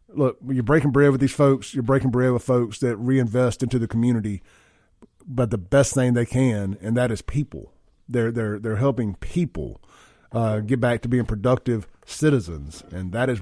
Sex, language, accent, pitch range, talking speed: male, English, American, 105-130 Hz, 190 wpm